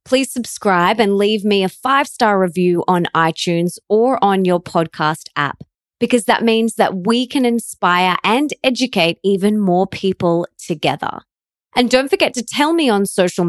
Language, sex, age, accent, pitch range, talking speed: English, female, 20-39, Australian, 180-245 Hz, 160 wpm